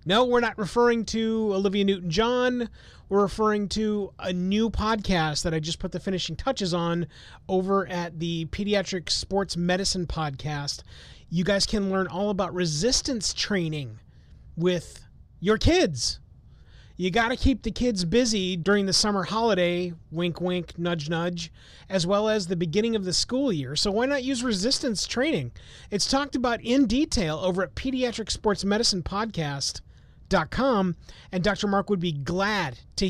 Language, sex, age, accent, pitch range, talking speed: English, male, 30-49, American, 160-210 Hz, 160 wpm